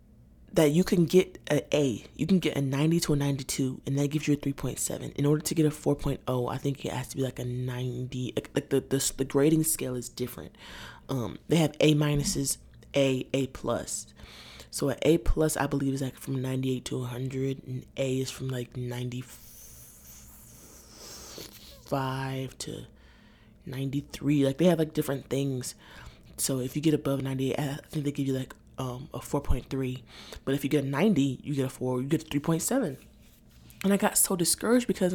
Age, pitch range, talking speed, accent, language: 20-39, 130-165 Hz, 190 wpm, American, English